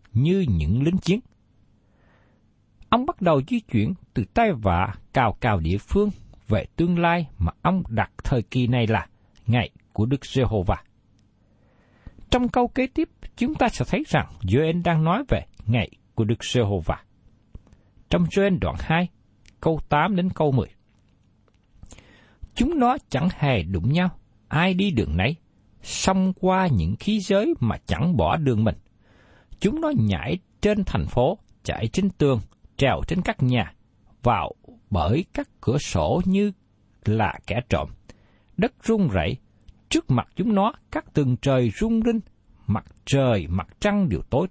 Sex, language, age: male, Vietnamese, 60-79